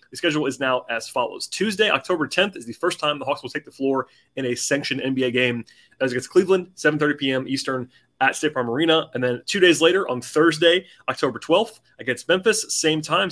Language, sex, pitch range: English, male, 125-155 Hz